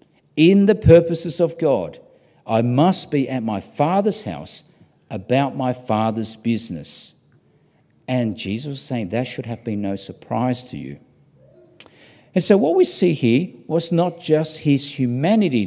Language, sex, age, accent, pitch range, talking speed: English, male, 50-69, Australian, 115-165 Hz, 150 wpm